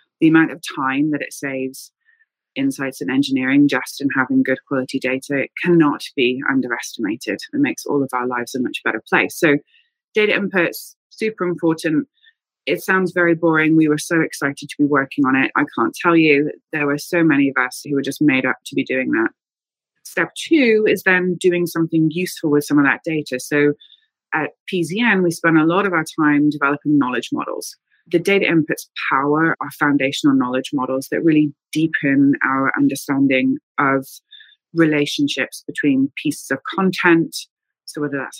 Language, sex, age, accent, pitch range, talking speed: English, female, 20-39, British, 145-185 Hz, 180 wpm